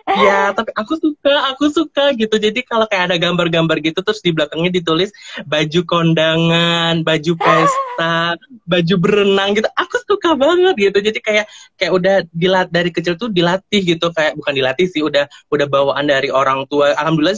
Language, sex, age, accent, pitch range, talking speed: Indonesian, male, 20-39, native, 145-195 Hz, 170 wpm